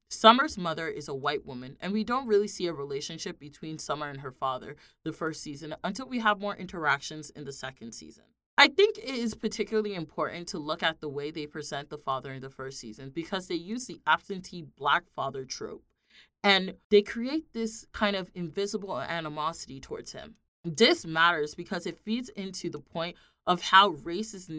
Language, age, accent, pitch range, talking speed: English, 30-49, American, 155-215 Hz, 195 wpm